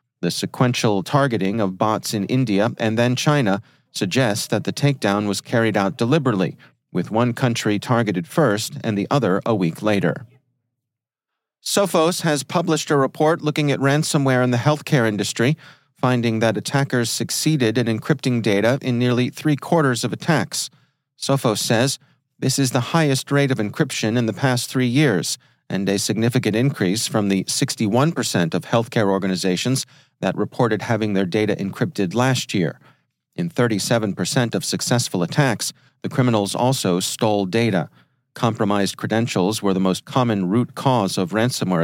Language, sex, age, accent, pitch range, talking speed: English, male, 40-59, American, 105-135 Hz, 150 wpm